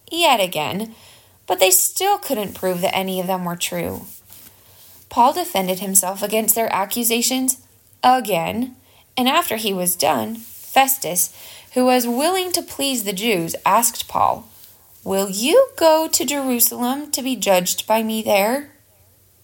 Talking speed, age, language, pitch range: 140 wpm, 20-39, English, 180-255 Hz